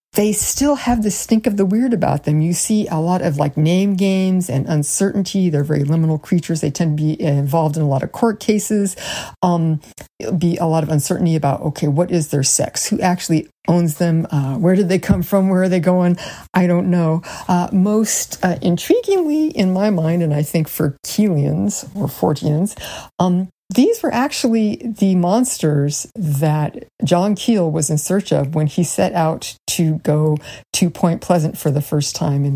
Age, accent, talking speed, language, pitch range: 50-69, American, 195 wpm, English, 155-200 Hz